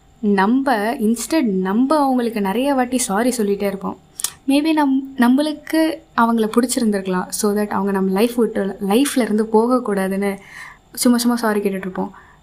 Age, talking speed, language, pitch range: 20-39, 125 wpm, Tamil, 200-235 Hz